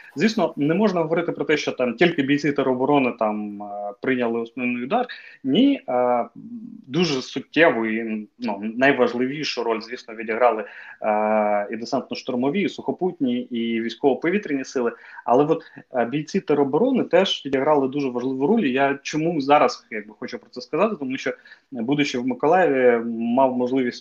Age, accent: 30-49, native